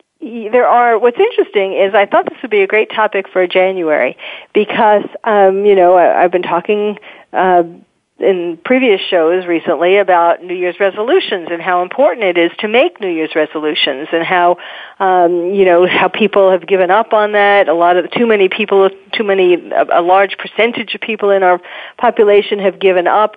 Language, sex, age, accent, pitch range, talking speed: English, female, 40-59, American, 185-235 Hz, 190 wpm